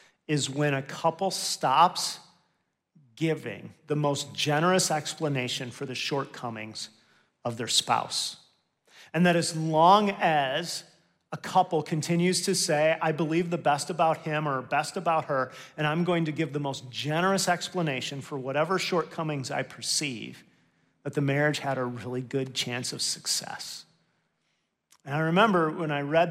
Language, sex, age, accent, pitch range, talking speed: English, male, 40-59, American, 130-165 Hz, 150 wpm